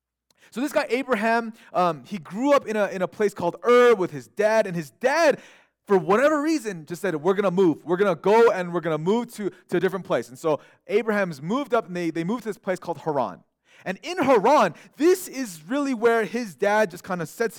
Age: 30-49